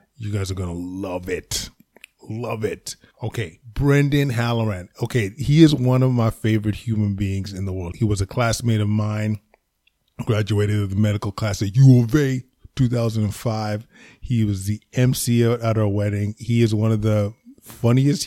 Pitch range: 105-120 Hz